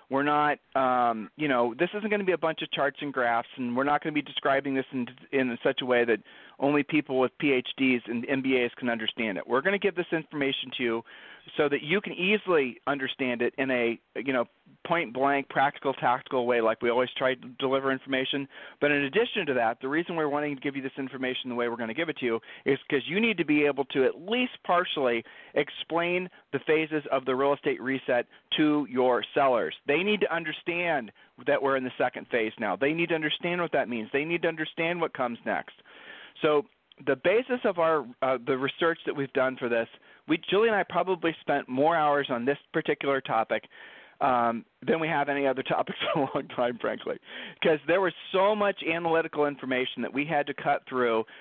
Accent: American